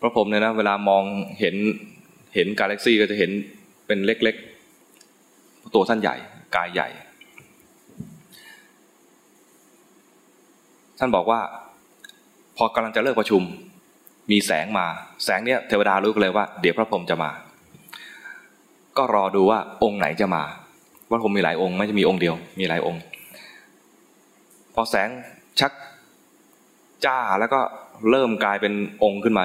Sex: male